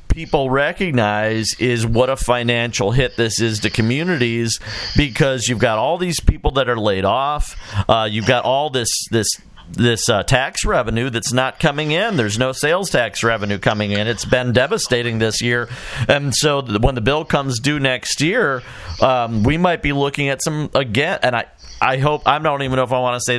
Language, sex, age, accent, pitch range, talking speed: English, male, 50-69, American, 115-145 Hz, 200 wpm